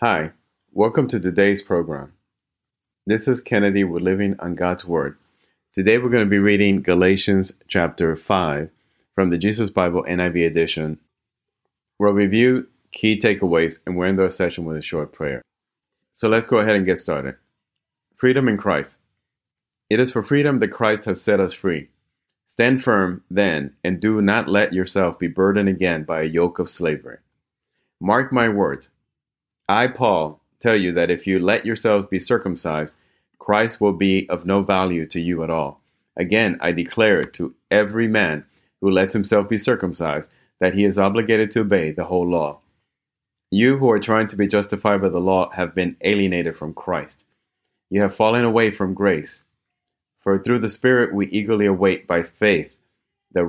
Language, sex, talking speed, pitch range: English, male, 170 wpm, 90-105 Hz